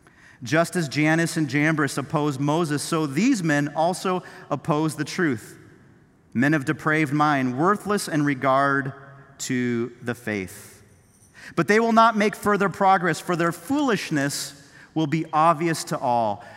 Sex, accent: male, American